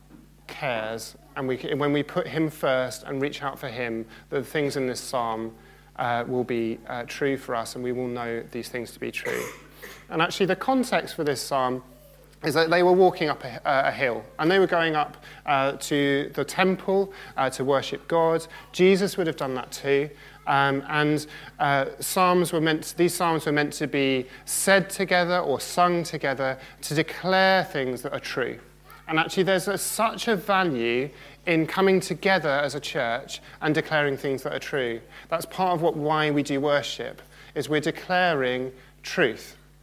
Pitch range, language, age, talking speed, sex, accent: 135-170 Hz, English, 30-49, 180 wpm, male, British